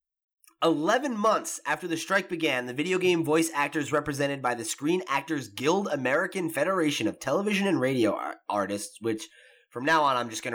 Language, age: English, 20-39